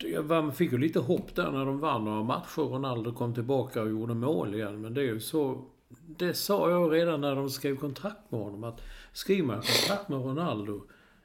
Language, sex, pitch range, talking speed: English, male, 110-145 Hz, 205 wpm